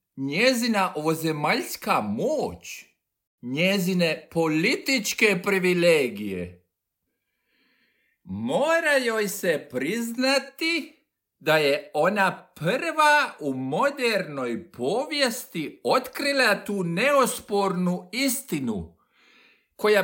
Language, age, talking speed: Croatian, 50-69, 65 wpm